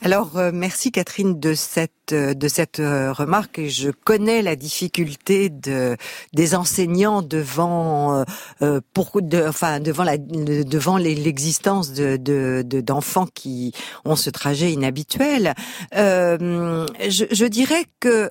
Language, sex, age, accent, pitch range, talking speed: French, female, 50-69, French, 160-220 Hz, 125 wpm